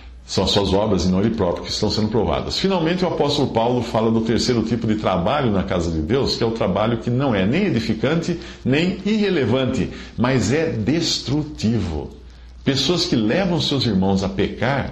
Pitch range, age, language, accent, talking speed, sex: 95-160 Hz, 50-69, English, Brazilian, 190 wpm, male